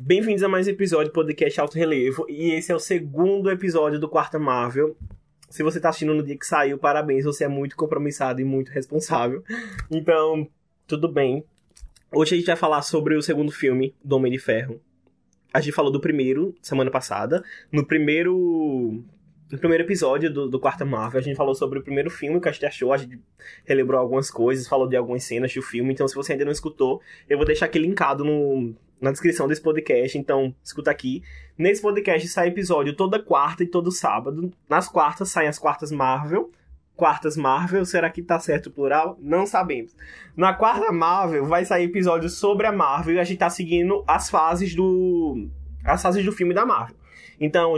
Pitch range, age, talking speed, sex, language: 140-185 Hz, 20-39, 195 wpm, male, Portuguese